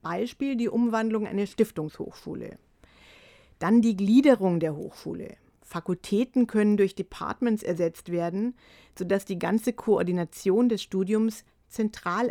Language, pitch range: German, 180-230 Hz